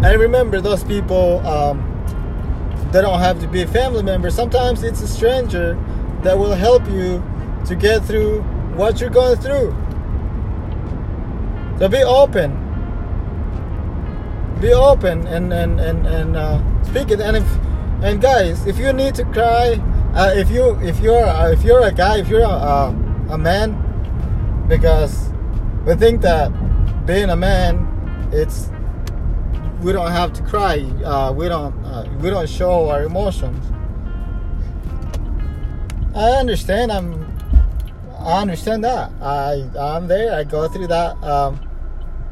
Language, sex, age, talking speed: English, male, 20-39, 140 wpm